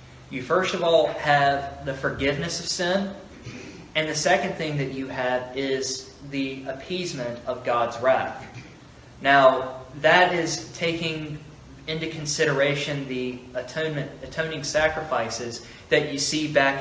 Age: 20-39